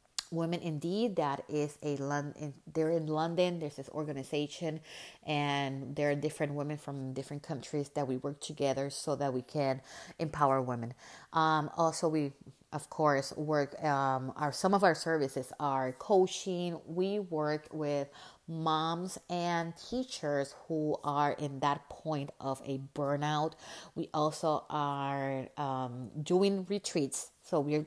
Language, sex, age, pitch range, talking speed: English, female, 30-49, 140-170 Hz, 145 wpm